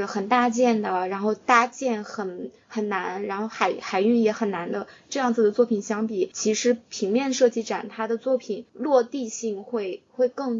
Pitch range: 210-255 Hz